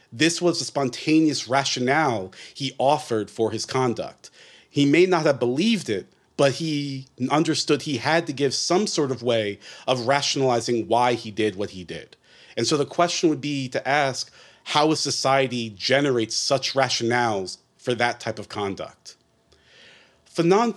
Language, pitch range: English, 115-150 Hz